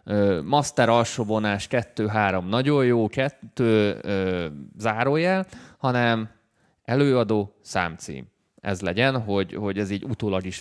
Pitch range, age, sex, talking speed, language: 95-125 Hz, 20-39, male, 115 wpm, Hungarian